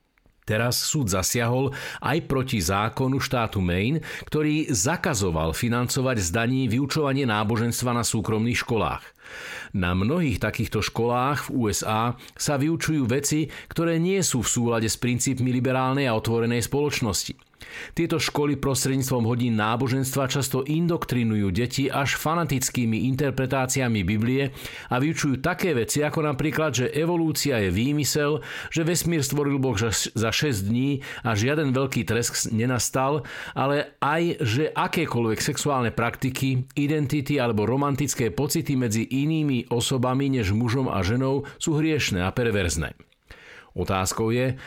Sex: male